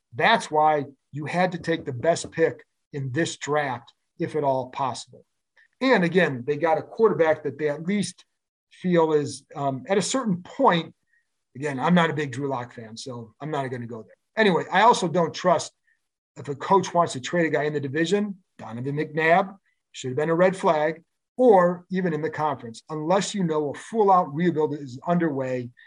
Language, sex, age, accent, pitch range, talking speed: English, male, 50-69, American, 140-190 Hz, 200 wpm